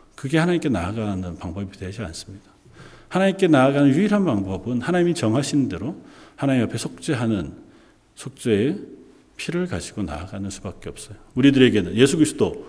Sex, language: male, Korean